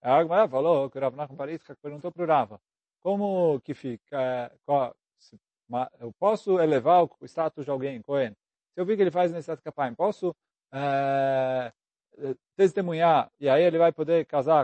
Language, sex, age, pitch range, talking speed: Portuguese, male, 40-59, 145-205 Hz, 170 wpm